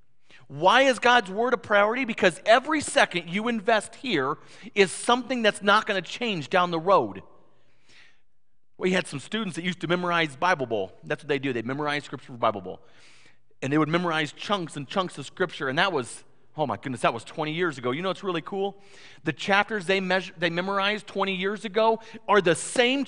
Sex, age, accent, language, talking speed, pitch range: male, 40-59, American, English, 205 wpm, 155-205 Hz